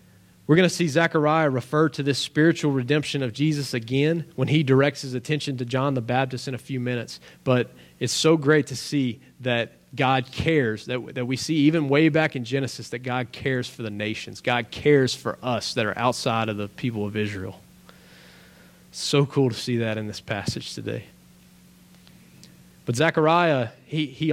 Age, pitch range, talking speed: 30-49, 125-155 Hz, 180 wpm